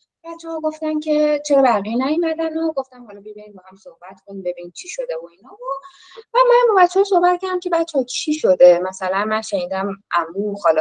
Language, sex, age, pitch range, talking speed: Persian, female, 20-39, 180-285 Hz, 195 wpm